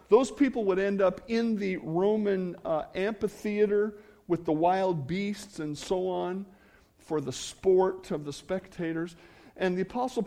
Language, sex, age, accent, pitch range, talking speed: English, male, 50-69, American, 150-220 Hz, 150 wpm